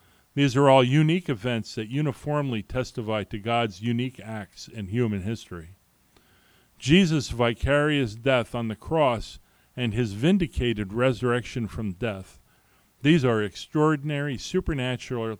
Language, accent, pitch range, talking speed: English, American, 110-140 Hz, 120 wpm